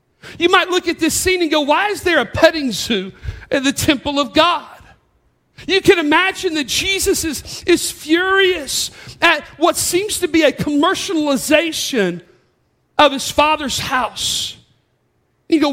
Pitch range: 275-345 Hz